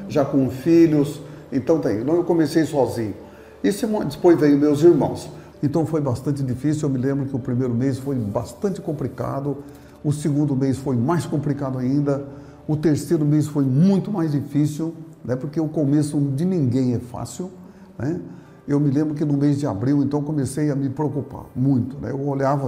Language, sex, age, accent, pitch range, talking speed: Portuguese, male, 60-79, Brazilian, 130-160 Hz, 185 wpm